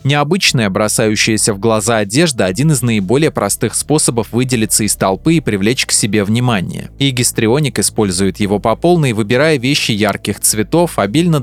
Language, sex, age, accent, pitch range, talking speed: Russian, male, 20-39, native, 105-145 Hz, 145 wpm